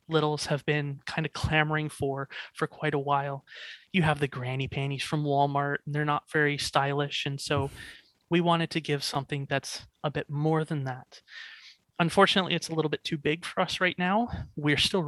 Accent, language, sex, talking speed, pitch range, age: American, English, male, 195 wpm, 140-160 Hz, 30-49